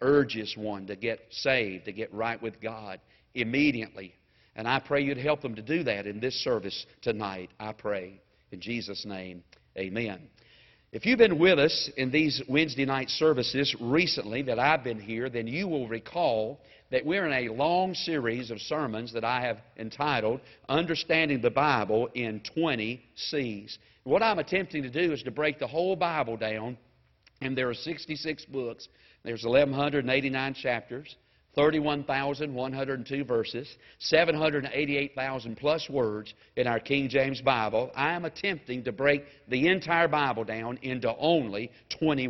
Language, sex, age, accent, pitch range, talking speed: English, male, 50-69, American, 115-155 Hz, 155 wpm